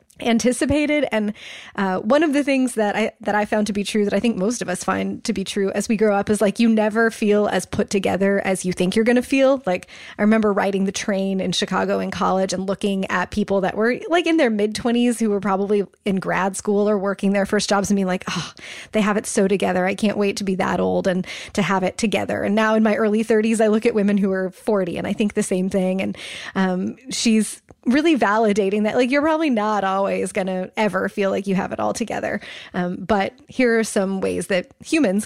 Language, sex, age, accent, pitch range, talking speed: English, female, 20-39, American, 195-230 Hz, 245 wpm